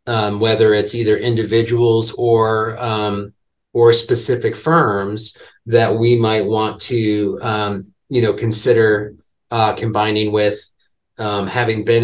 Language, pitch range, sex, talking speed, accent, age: English, 105-115 Hz, male, 125 wpm, American, 30-49